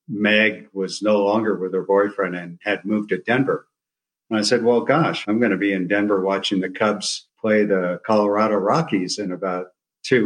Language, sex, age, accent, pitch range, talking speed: English, male, 50-69, American, 90-105 Hz, 195 wpm